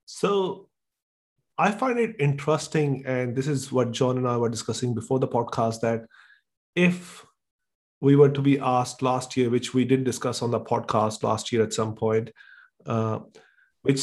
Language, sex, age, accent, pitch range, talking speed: English, male, 30-49, Indian, 125-155 Hz, 170 wpm